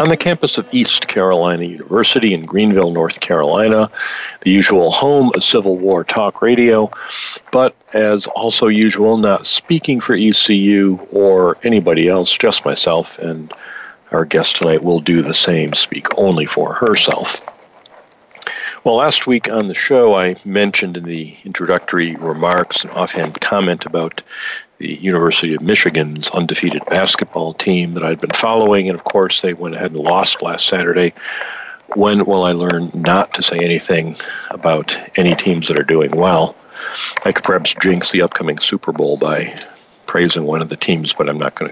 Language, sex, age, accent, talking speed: English, male, 50-69, American, 165 wpm